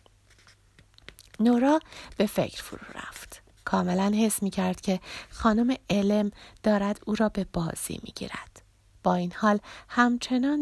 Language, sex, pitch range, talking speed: Persian, female, 195-310 Hz, 125 wpm